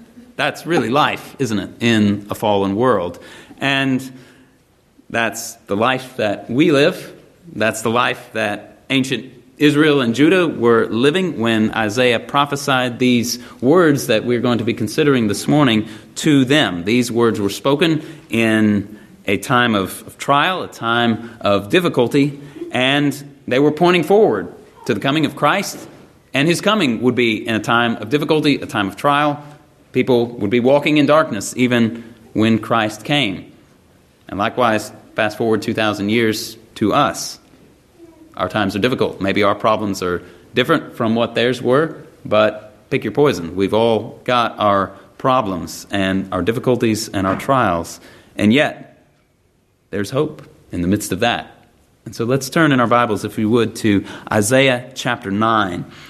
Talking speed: 160 wpm